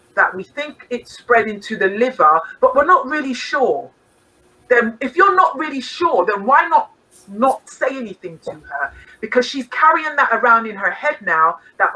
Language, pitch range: English, 205-285 Hz